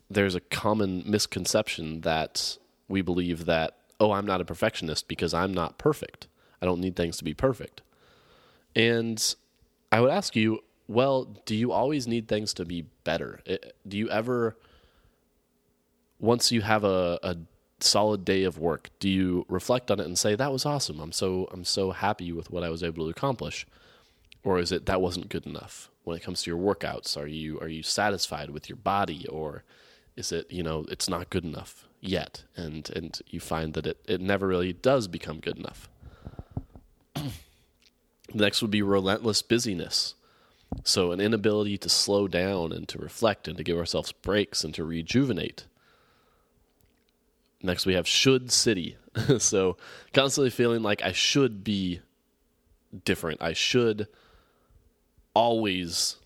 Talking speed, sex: 165 wpm, male